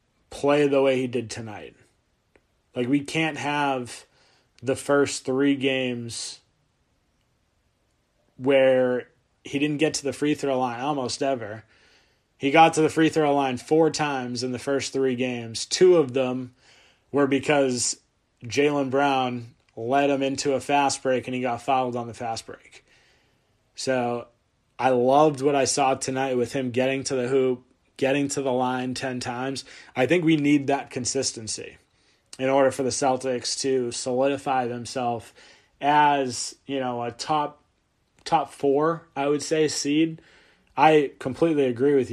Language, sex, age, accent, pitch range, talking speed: English, male, 20-39, American, 125-140 Hz, 155 wpm